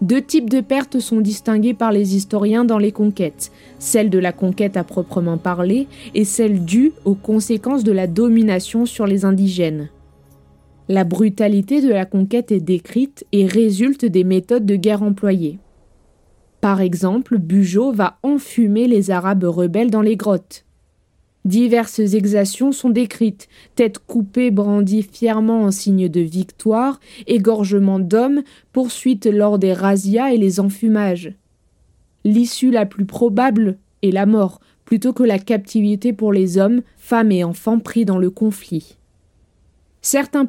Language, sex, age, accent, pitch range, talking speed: French, female, 20-39, French, 190-230 Hz, 145 wpm